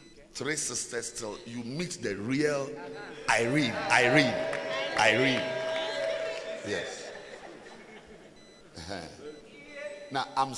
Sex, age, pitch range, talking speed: male, 50-69, 120-180 Hz, 80 wpm